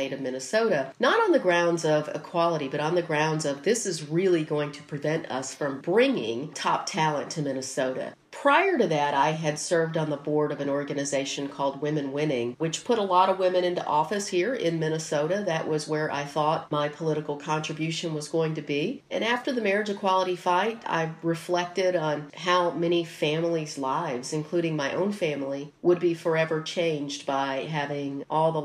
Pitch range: 145-180 Hz